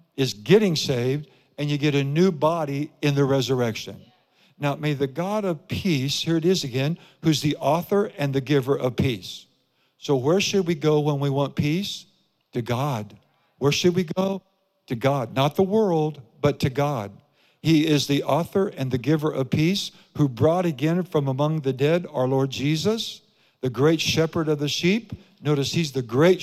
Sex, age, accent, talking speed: male, 60-79, American, 185 wpm